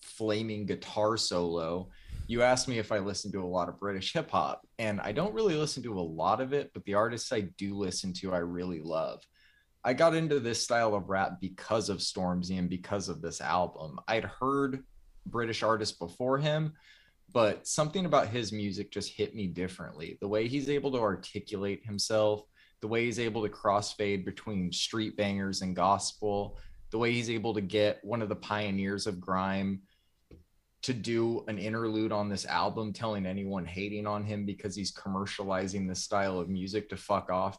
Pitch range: 95-110 Hz